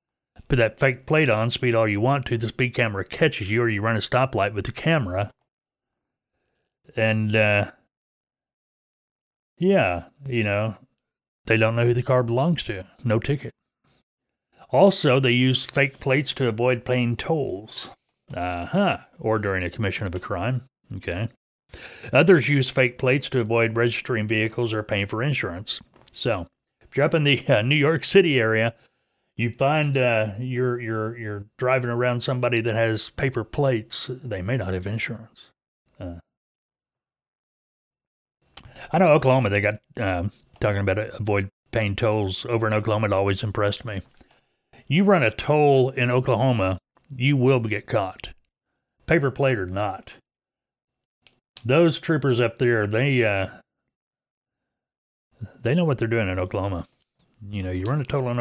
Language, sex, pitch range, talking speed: English, male, 105-130 Hz, 155 wpm